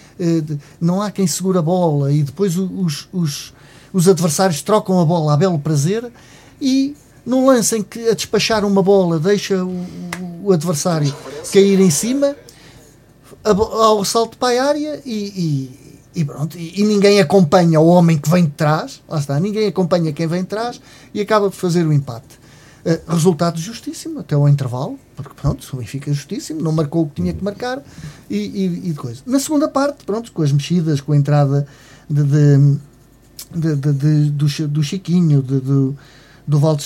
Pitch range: 145-200 Hz